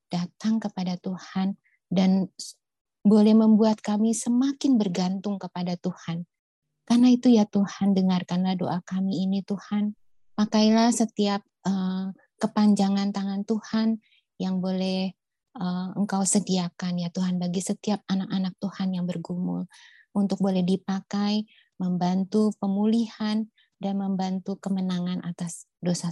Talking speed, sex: 115 wpm, female